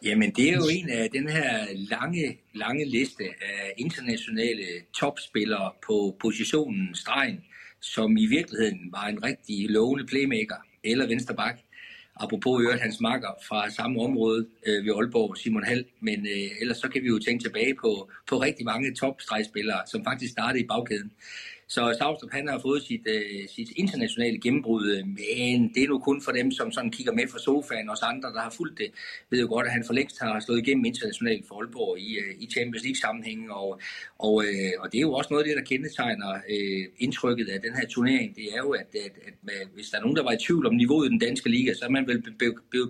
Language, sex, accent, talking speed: Danish, male, native, 215 wpm